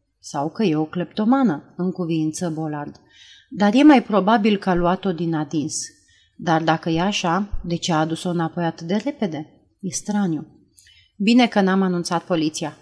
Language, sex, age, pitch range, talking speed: Romanian, female, 30-49, 165-215 Hz, 170 wpm